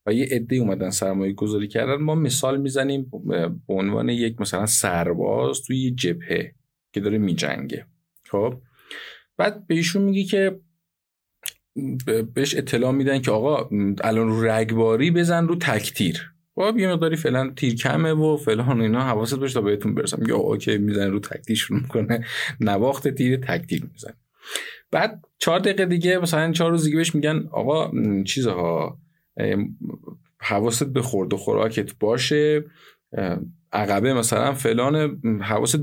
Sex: male